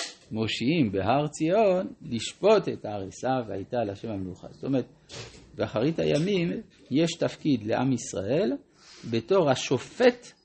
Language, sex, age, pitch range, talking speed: Hebrew, male, 50-69, 95-135 Hz, 115 wpm